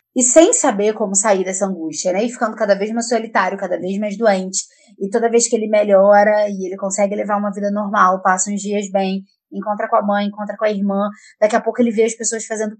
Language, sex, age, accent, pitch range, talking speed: Portuguese, female, 20-39, Brazilian, 190-235 Hz, 240 wpm